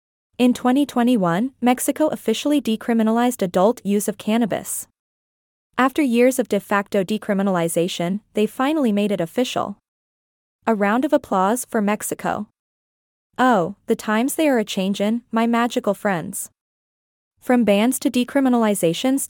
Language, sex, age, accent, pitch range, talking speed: English, female, 20-39, American, 200-250 Hz, 130 wpm